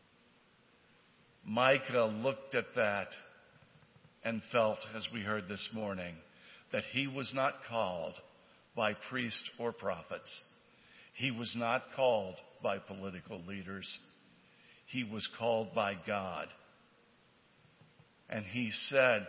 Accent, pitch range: American, 105-125 Hz